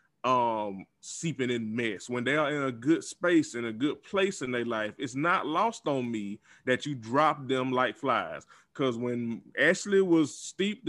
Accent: American